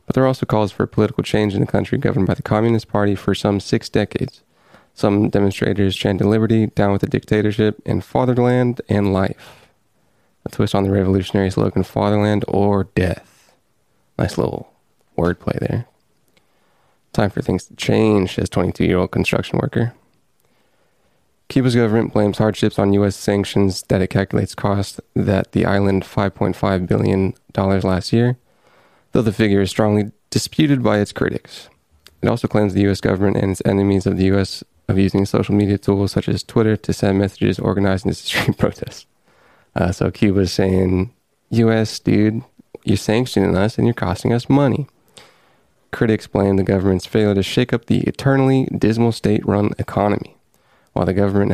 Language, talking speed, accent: English, 165 wpm, American